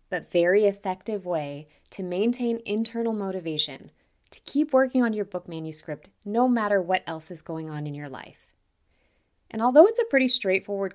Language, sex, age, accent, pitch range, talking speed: English, female, 20-39, American, 150-220 Hz, 170 wpm